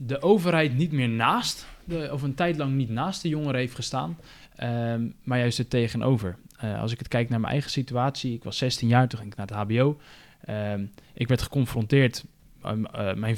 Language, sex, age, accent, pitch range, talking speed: Dutch, male, 20-39, Dutch, 115-140 Hz, 185 wpm